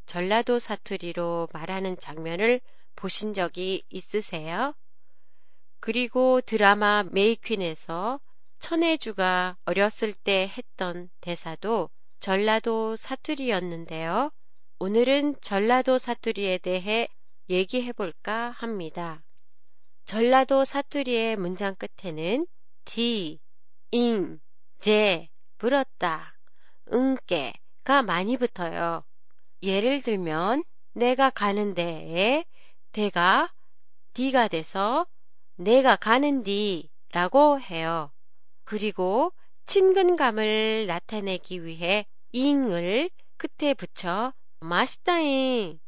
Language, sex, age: Japanese, female, 30-49